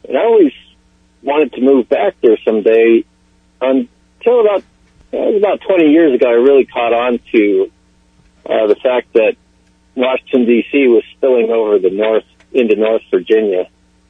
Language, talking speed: English, 145 wpm